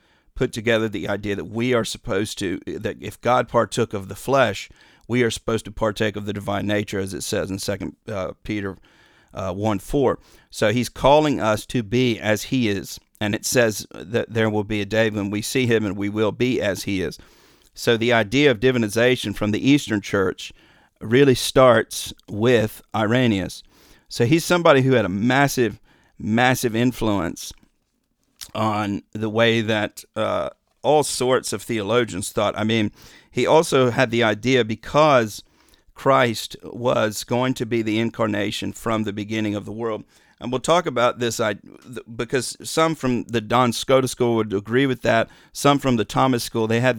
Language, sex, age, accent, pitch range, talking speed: English, male, 50-69, American, 105-120 Hz, 175 wpm